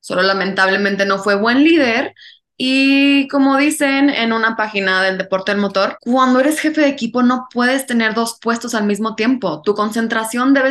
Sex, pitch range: female, 195-260 Hz